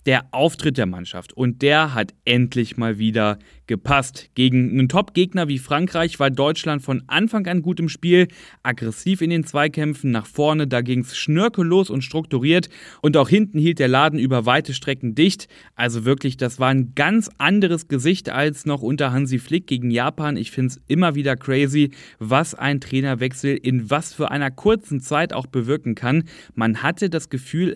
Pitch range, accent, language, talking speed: 125-160 Hz, German, German, 180 wpm